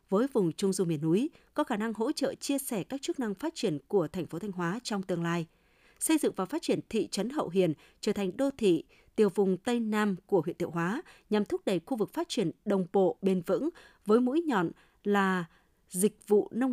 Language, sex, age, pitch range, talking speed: Vietnamese, female, 20-39, 185-245 Hz, 235 wpm